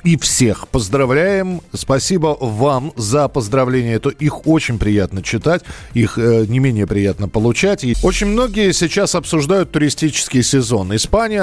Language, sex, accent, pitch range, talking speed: Russian, male, native, 115-150 Hz, 130 wpm